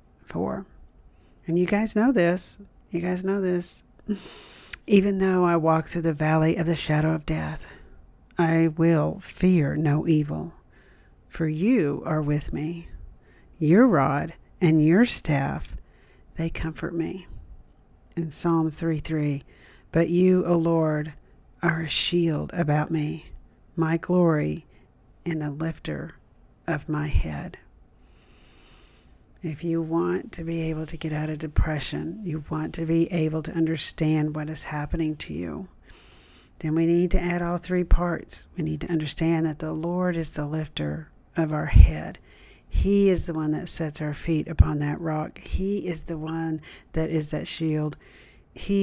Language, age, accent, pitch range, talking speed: English, 50-69, American, 150-170 Hz, 155 wpm